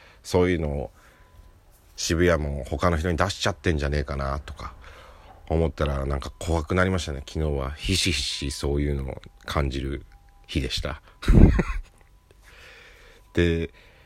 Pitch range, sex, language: 75-110 Hz, male, Japanese